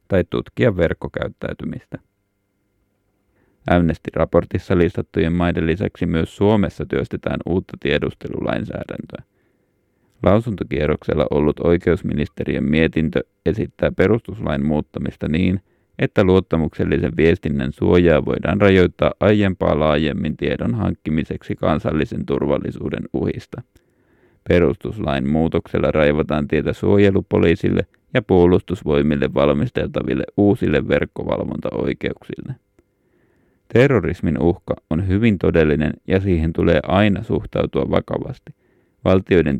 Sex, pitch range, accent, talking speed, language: male, 80-100 Hz, native, 85 wpm, Finnish